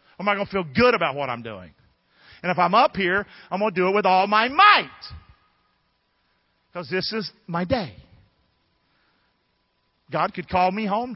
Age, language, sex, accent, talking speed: 50-69, English, male, American, 185 wpm